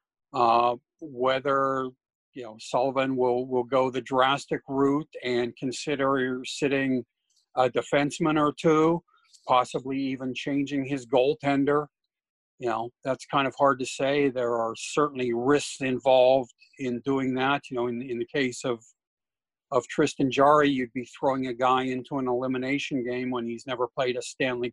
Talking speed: 155 wpm